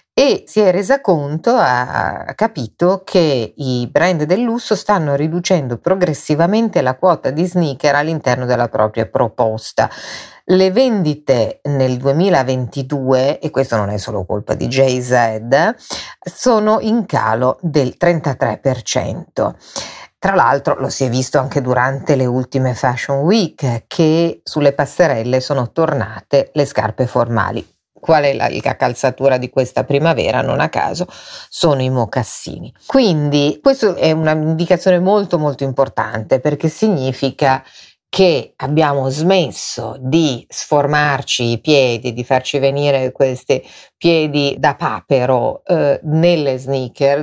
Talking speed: 125 wpm